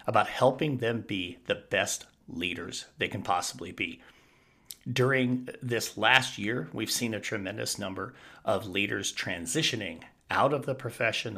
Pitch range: 115-135 Hz